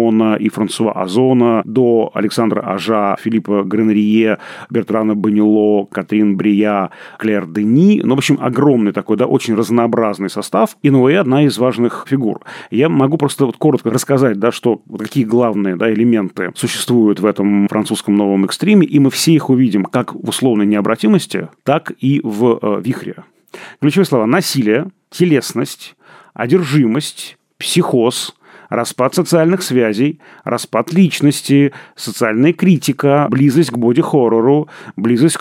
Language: Russian